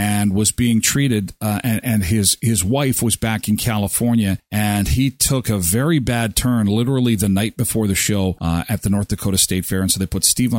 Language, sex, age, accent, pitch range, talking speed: English, male, 40-59, American, 95-130 Hz, 220 wpm